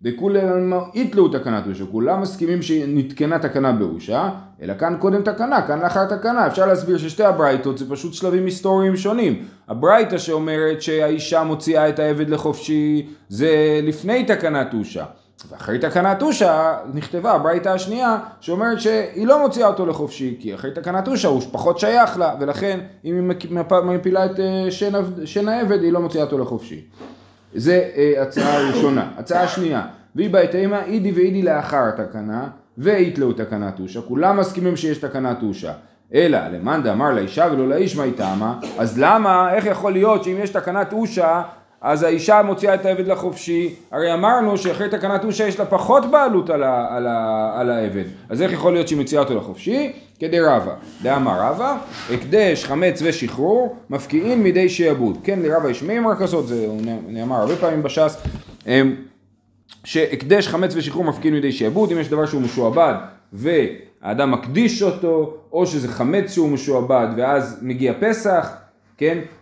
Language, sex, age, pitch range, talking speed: Hebrew, male, 30-49, 140-195 Hz, 155 wpm